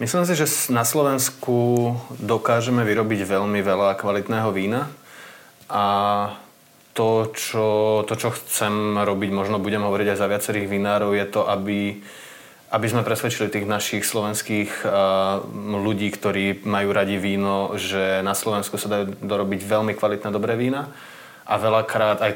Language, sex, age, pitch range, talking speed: Slovak, male, 20-39, 100-115 Hz, 140 wpm